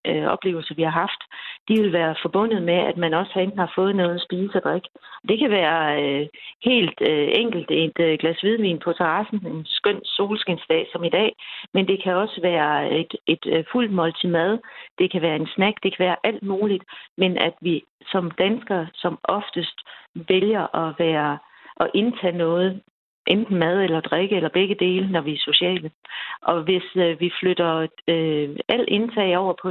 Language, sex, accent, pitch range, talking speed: Danish, female, native, 165-195 Hz, 185 wpm